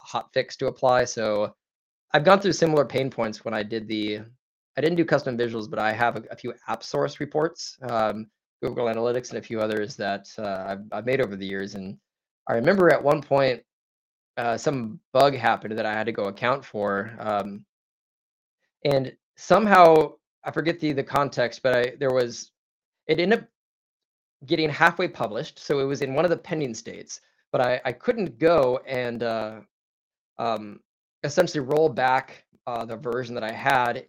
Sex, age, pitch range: male, 20-39, 115-150 Hz